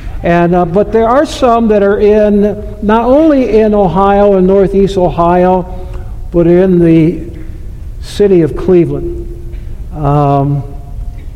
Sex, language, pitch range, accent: male, English, 145-190 Hz, American